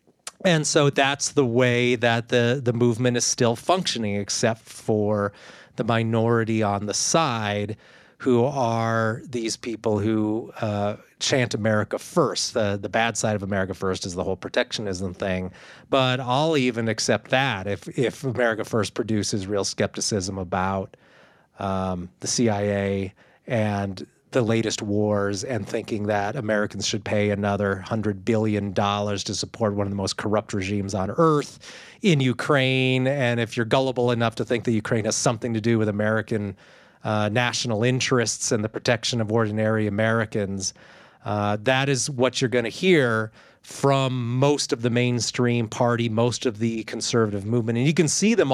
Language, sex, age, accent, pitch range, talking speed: English, male, 30-49, American, 105-125 Hz, 160 wpm